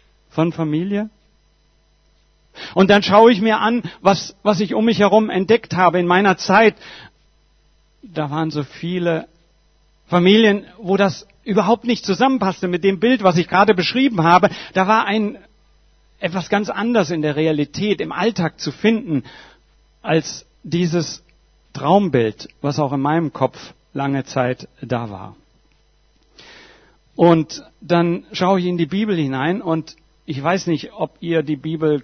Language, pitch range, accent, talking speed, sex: German, 160-205 Hz, German, 145 wpm, male